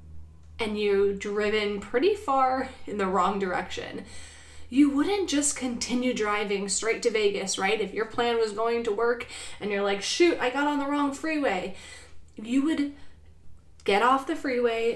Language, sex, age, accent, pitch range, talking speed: English, female, 20-39, American, 200-255 Hz, 165 wpm